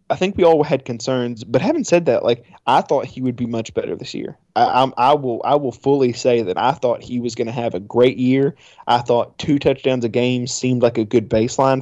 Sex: male